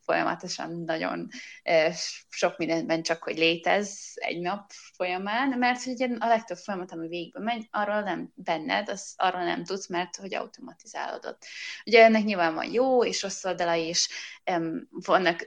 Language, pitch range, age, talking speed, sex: Hungarian, 175-215 Hz, 20-39, 150 wpm, female